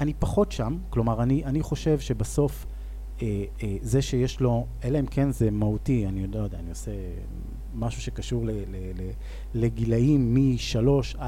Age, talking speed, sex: 30-49, 140 wpm, male